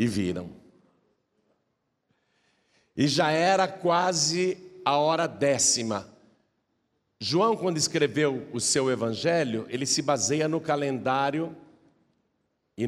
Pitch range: 130-175 Hz